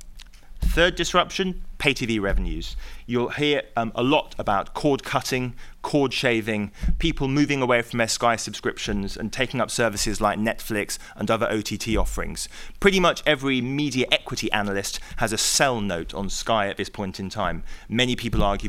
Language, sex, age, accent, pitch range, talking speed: English, male, 30-49, British, 105-135 Hz, 165 wpm